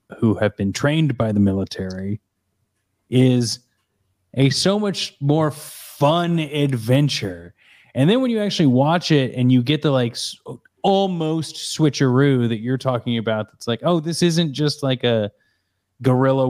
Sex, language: male, English